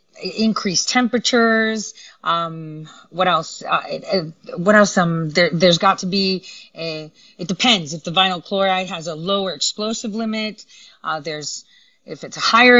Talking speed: 160 wpm